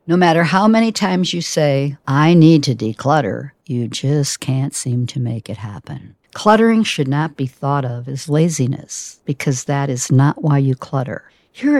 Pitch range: 135-170 Hz